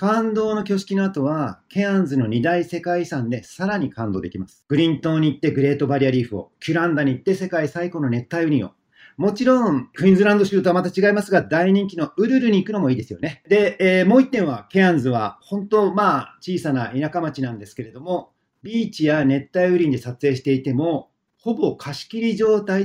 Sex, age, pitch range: male, 40-59, 130-195 Hz